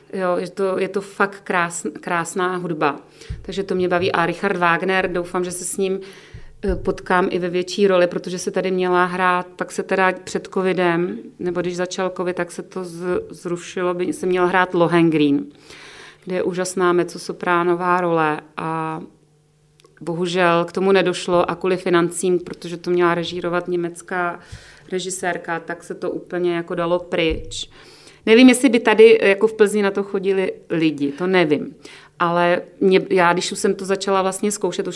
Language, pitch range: Czech, 170-190 Hz